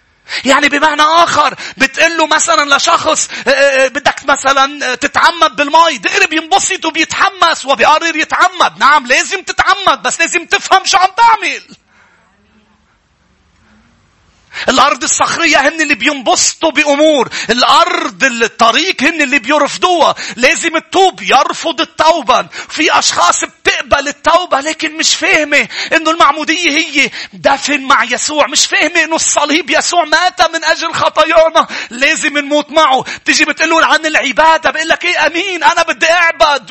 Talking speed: 120 wpm